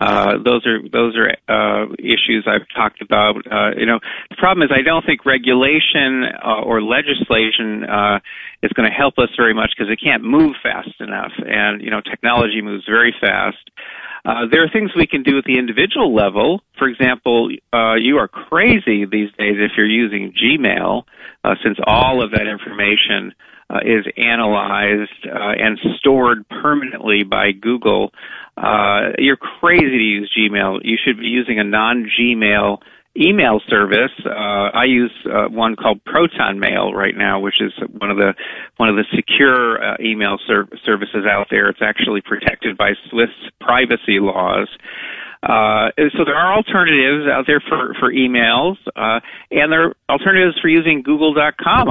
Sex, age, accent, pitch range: male, 40-59, American, 110-145 Hz